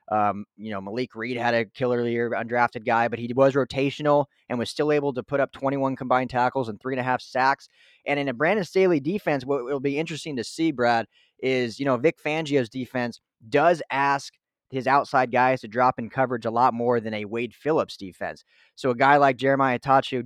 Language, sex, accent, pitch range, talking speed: English, male, American, 120-140 Hz, 215 wpm